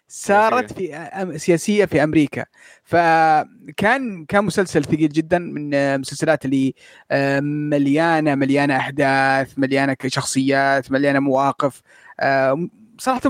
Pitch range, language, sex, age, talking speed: 140-180 Hz, Arabic, male, 20-39, 95 wpm